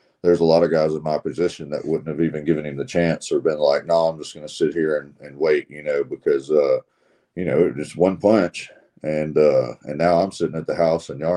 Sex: male